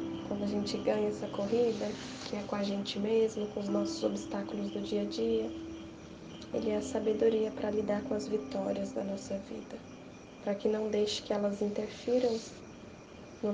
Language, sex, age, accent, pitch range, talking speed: Portuguese, female, 10-29, Brazilian, 130-210 Hz, 175 wpm